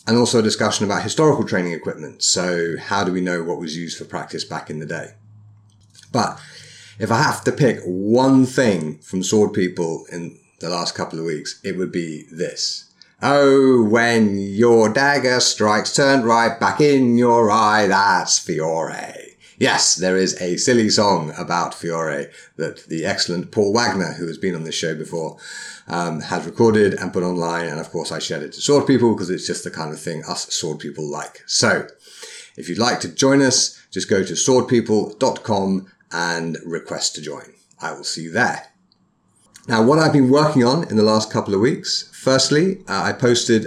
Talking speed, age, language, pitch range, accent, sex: 190 wpm, 30-49, English, 85-120 Hz, British, male